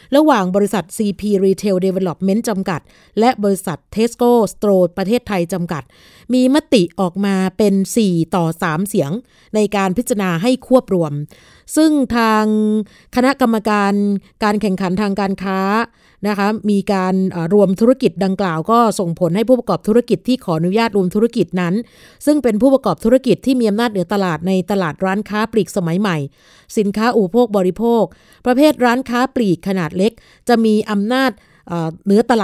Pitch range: 185-230 Hz